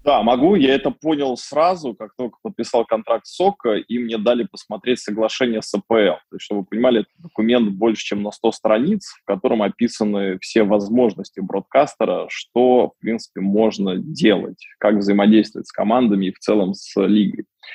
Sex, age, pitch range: male, 20-39, 105-120 Hz